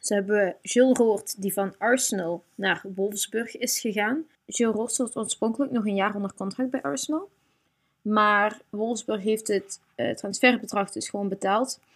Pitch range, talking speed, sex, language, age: 195-240 Hz, 155 wpm, female, Dutch, 20-39